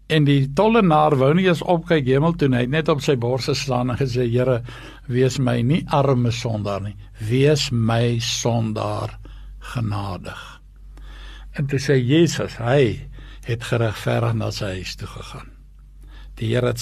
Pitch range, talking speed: 120-160 Hz, 160 wpm